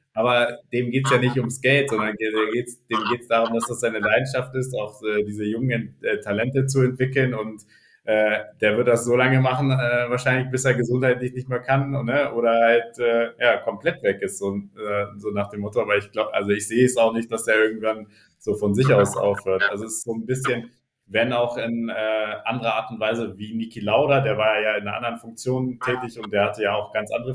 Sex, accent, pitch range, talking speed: male, German, 105-125 Hz, 220 wpm